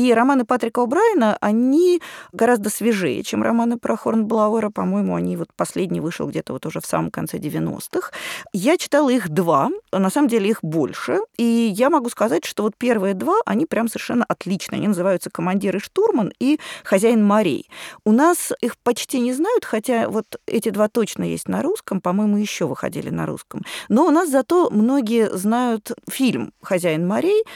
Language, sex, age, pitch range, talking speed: Russian, female, 20-39, 185-250 Hz, 175 wpm